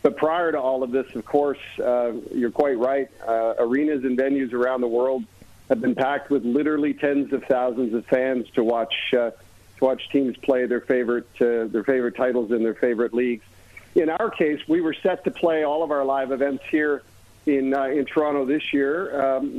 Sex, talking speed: male, 205 wpm